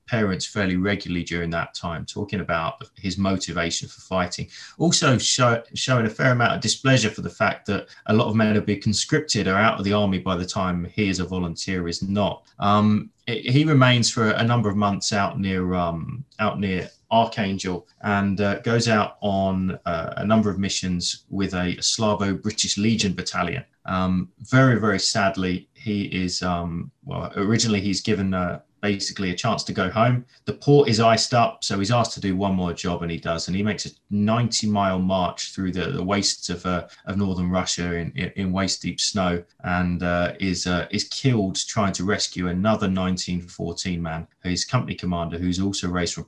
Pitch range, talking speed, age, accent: 90-110 Hz, 190 wpm, 20-39, British